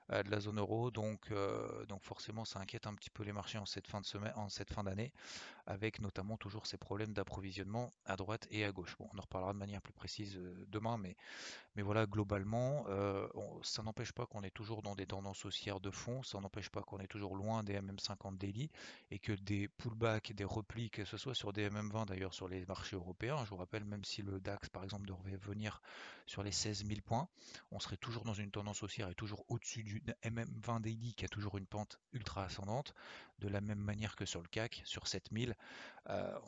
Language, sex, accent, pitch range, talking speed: French, male, French, 100-110 Hz, 225 wpm